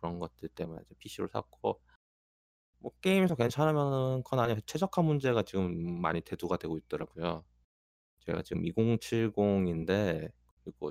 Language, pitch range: Korean, 80-120 Hz